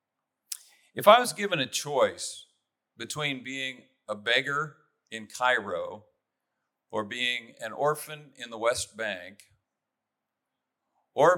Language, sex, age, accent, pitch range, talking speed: English, male, 50-69, American, 105-150 Hz, 110 wpm